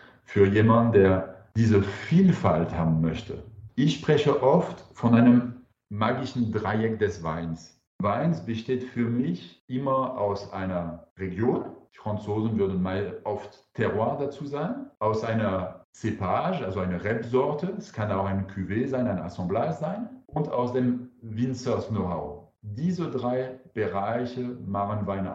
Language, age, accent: German, 40-59, German